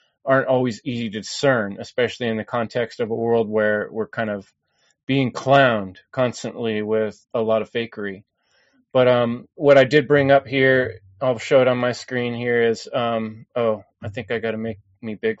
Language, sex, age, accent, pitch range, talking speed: English, male, 30-49, American, 110-130 Hz, 195 wpm